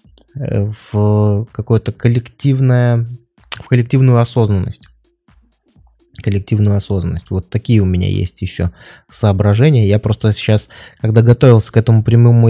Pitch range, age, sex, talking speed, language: 105-120 Hz, 20-39, male, 100 wpm, Russian